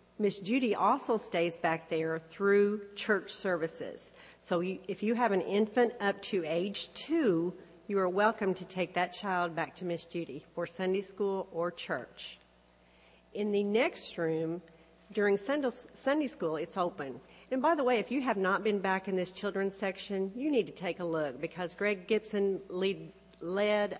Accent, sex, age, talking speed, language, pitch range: American, female, 40-59, 175 wpm, English, 175-225 Hz